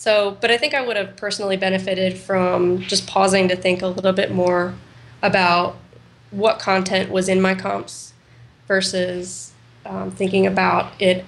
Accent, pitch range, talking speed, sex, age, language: American, 180-195 Hz, 160 wpm, female, 10-29, English